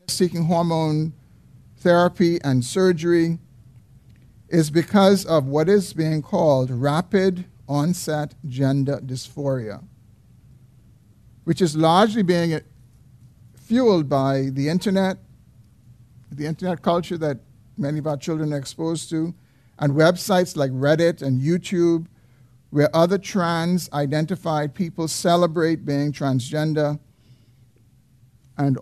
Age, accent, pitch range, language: 50-69, American, 125-165 Hz, English